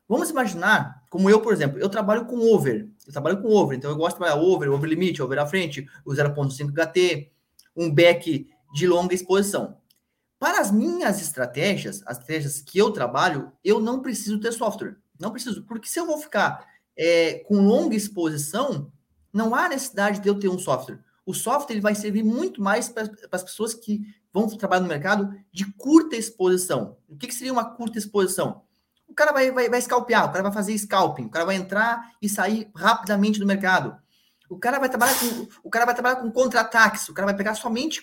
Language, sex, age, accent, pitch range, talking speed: Portuguese, male, 20-39, Brazilian, 185-240 Hz, 200 wpm